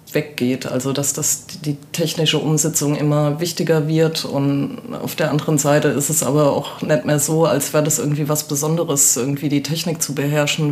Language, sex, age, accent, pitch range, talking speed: German, female, 20-39, German, 145-160 Hz, 180 wpm